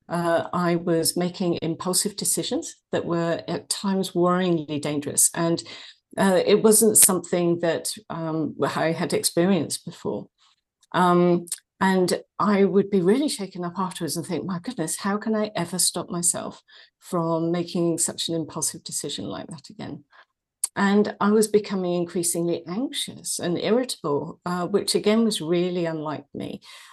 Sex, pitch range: female, 165-200 Hz